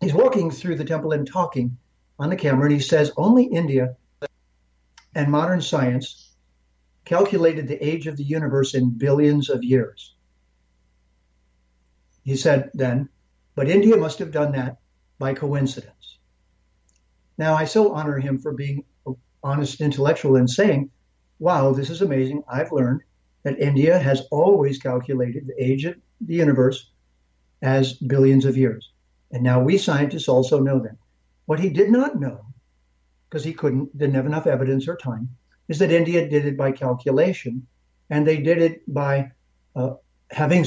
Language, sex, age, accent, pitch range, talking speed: English, male, 60-79, American, 125-155 Hz, 155 wpm